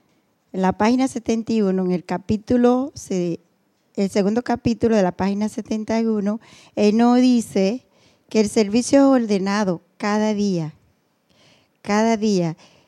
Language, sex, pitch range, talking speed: Spanish, female, 200-240 Hz, 120 wpm